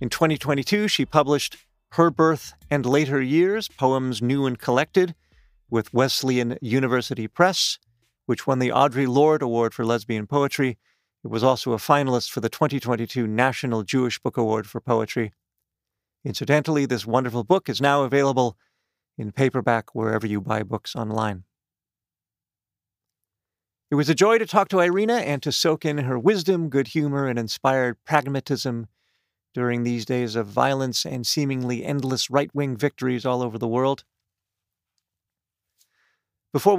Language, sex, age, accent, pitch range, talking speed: English, male, 40-59, American, 120-150 Hz, 145 wpm